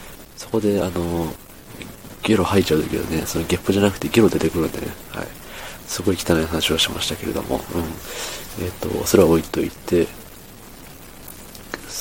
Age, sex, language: 40-59, male, Japanese